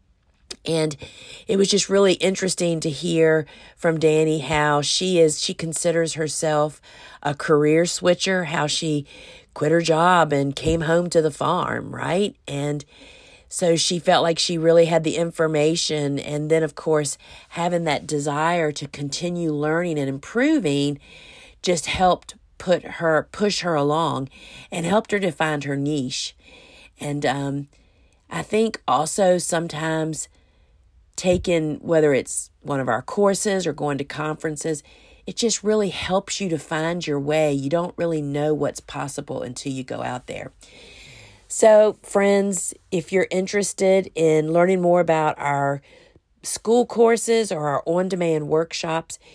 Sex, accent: female, American